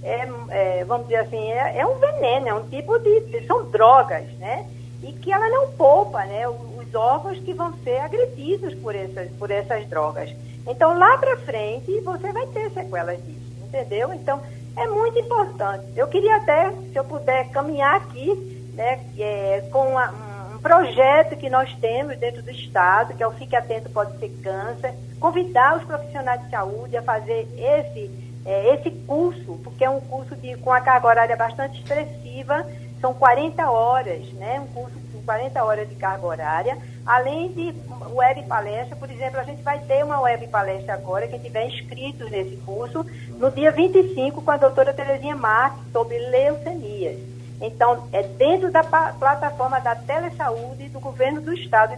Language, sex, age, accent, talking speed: Portuguese, female, 50-69, Brazilian, 165 wpm